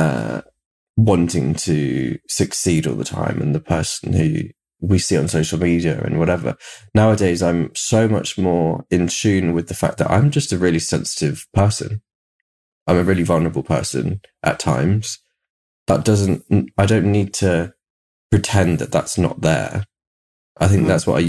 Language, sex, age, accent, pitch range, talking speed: English, male, 20-39, British, 85-110 Hz, 160 wpm